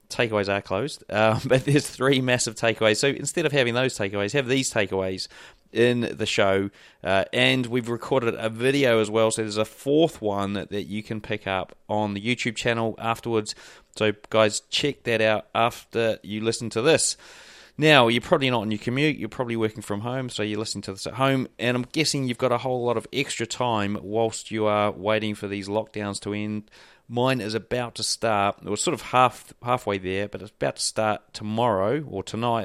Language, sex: English, male